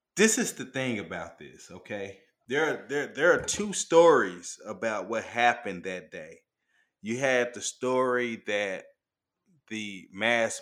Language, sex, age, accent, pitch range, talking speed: English, male, 30-49, American, 105-130 Hz, 135 wpm